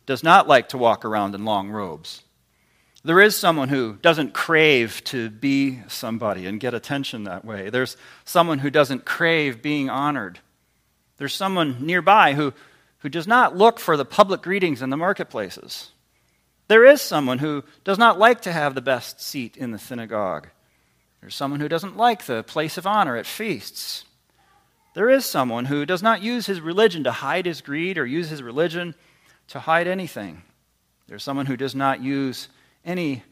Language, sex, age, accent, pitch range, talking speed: English, male, 40-59, American, 125-170 Hz, 175 wpm